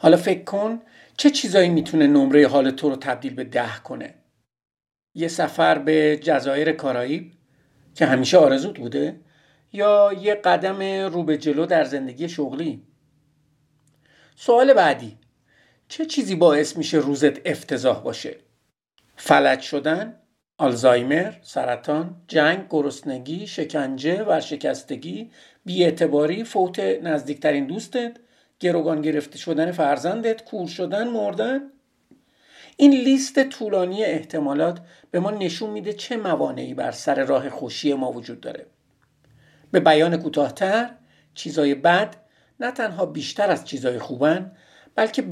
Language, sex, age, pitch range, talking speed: Persian, male, 50-69, 145-210 Hz, 120 wpm